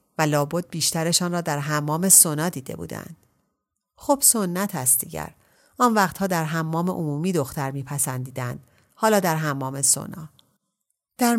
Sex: female